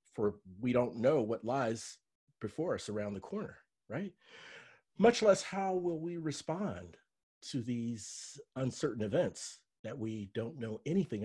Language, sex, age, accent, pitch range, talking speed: English, male, 40-59, American, 110-155 Hz, 145 wpm